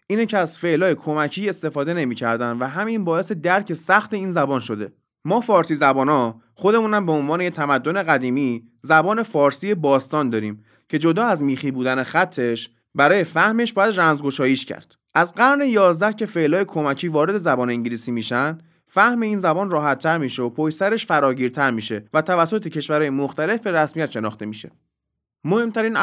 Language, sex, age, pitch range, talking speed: Persian, male, 30-49, 135-200 Hz, 160 wpm